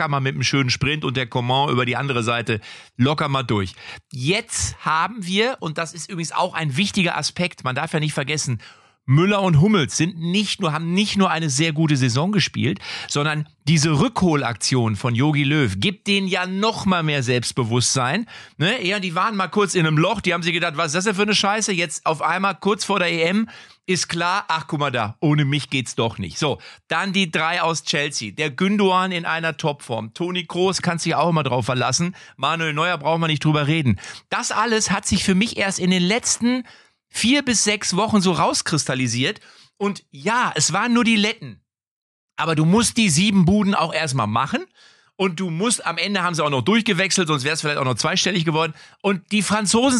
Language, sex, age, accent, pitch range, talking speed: German, male, 40-59, German, 150-200 Hz, 210 wpm